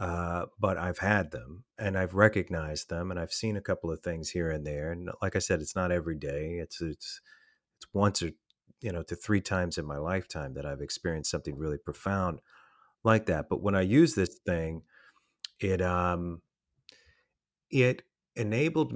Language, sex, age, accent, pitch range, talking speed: English, male, 30-49, American, 85-105 Hz, 185 wpm